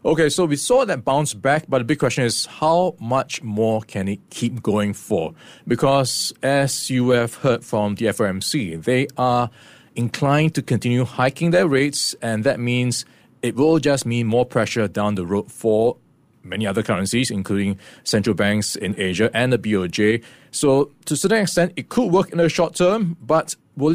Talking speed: 185 wpm